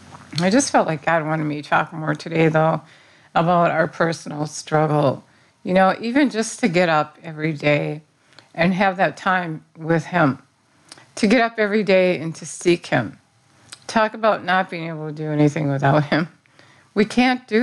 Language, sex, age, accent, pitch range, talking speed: English, female, 50-69, American, 150-195 Hz, 180 wpm